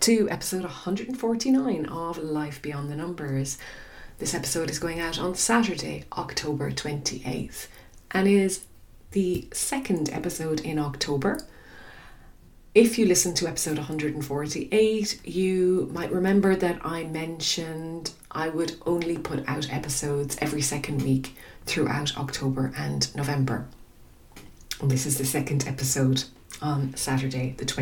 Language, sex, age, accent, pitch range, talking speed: English, female, 30-49, Irish, 145-190 Hz, 125 wpm